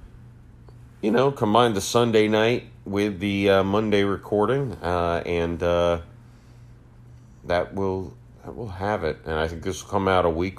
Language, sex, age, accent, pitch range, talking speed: English, male, 40-59, American, 85-115 Hz, 165 wpm